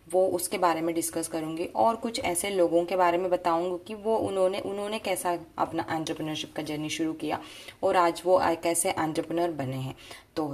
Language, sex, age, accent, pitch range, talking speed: Hindi, female, 20-39, native, 155-190 Hz, 190 wpm